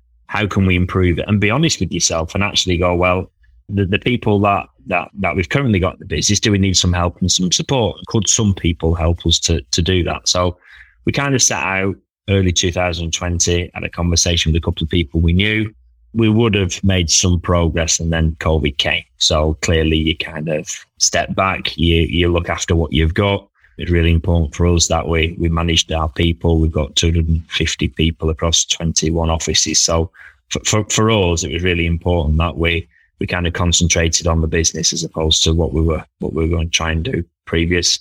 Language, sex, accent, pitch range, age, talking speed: English, male, British, 80-95 Hz, 20-39, 220 wpm